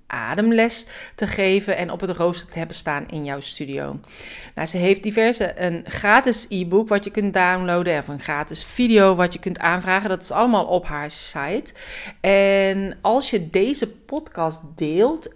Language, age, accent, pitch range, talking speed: Dutch, 40-59, Dutch, 155-205 Hz, 170 wpm